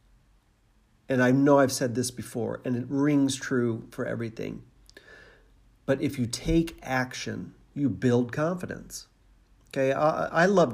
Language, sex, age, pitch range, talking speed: English, male, 50-69, 120-145 Hz, 140 wpm